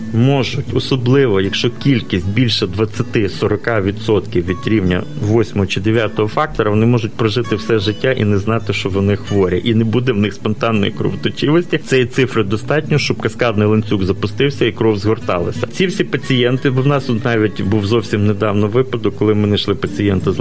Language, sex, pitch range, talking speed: Ukrainian, male, 105-130 Hz, 165 wpm